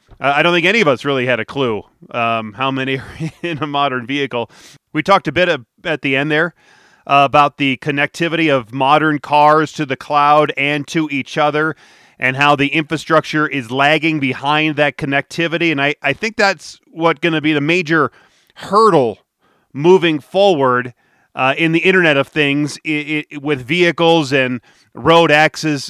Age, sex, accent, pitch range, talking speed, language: 30-49, male, American, 140-165 Hz, 175 wpm, English